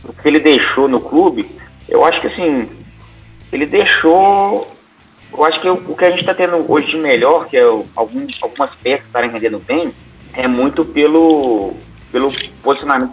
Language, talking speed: Portuguese, 170 wpm